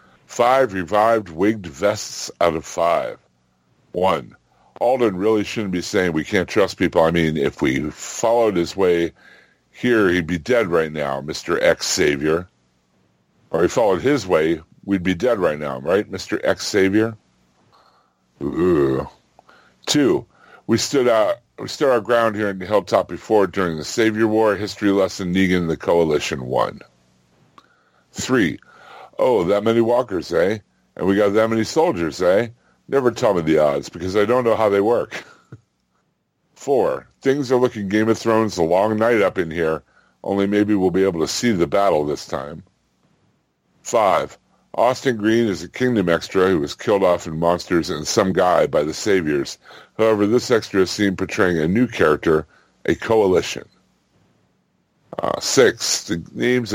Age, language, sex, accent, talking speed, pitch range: 60-79, English, female, American, 165 wpm, 80-110 Hz